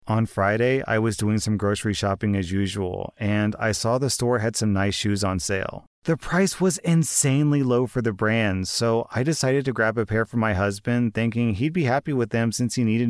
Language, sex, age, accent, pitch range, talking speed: English, male, 30-49, American, 115-145 Hz, 220 wpm